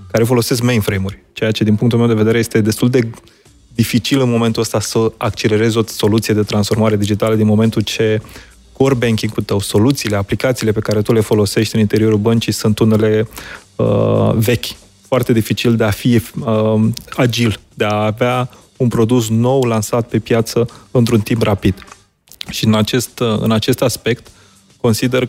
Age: 20-39